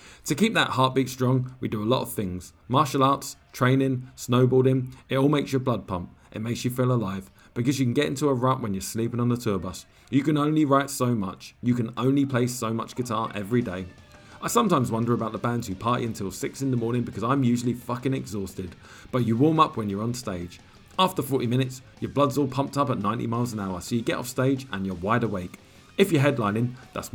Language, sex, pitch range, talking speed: English, male, 105-135 Hz, 235 wpm